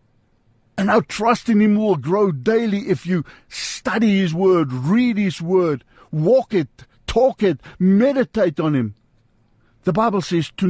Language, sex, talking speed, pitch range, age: English, male, 150 wpm, 125-195 Hz, 60-79